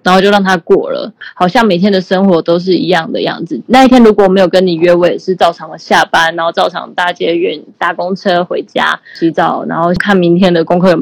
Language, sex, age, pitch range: Chinese, female, 20-39, 175-210 Hz